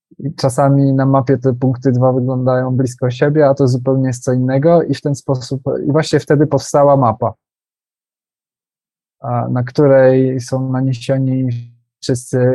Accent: native